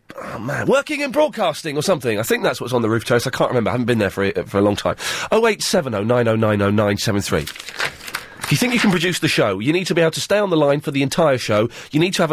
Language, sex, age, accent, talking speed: English, male, 30-49, British, 270 wpm